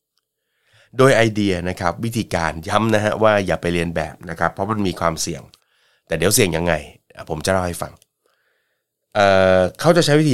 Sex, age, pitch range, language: male, 30-49, 90-115 Hz, Thai